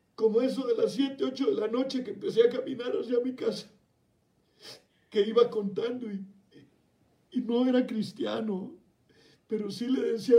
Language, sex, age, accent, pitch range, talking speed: Spanish, male, 50-69, Mexican, 215-275 Hz, 160 wpm